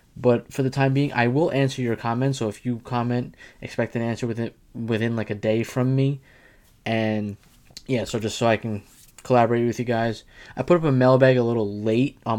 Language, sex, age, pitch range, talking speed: English, male, 20-39, 110-130 Hz, 215 wpm